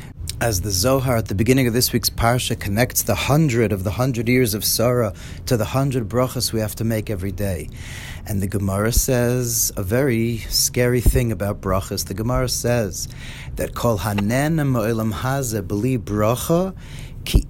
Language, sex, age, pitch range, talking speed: English, male, 30-49, 105-135 Hz, 160 wpm